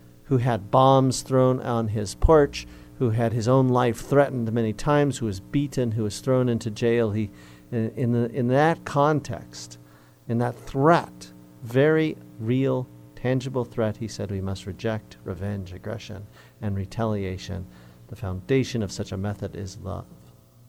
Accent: American